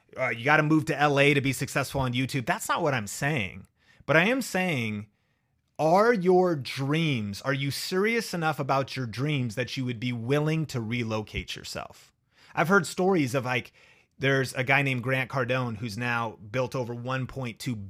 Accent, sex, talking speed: American, male, 180 wpm